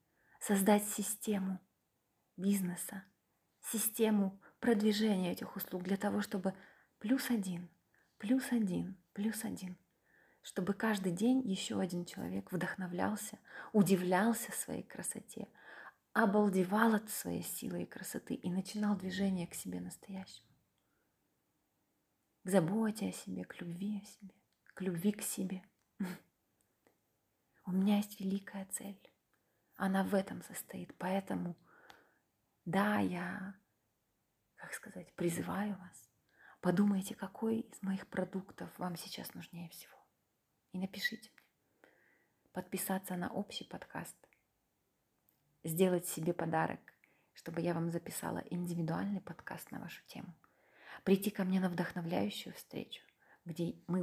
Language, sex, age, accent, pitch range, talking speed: Ukrainian, female, 30-49, native, 180-210 Hz, 115 wpm